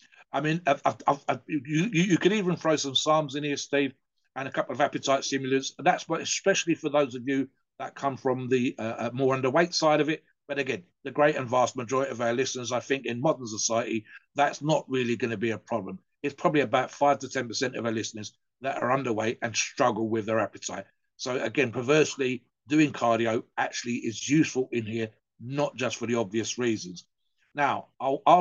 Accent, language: British, English